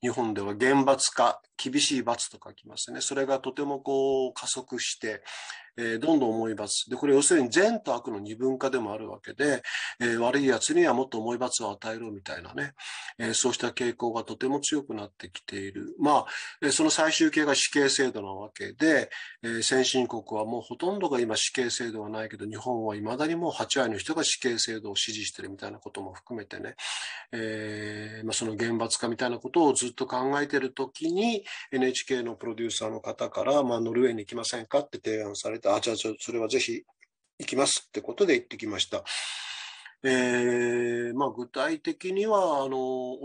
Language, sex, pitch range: Japanese, male, 110-135 Hz